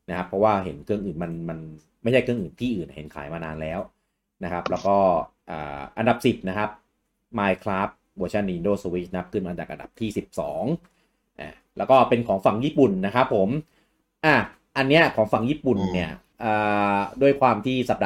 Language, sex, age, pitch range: English, male, 30-49, 90-120 Hz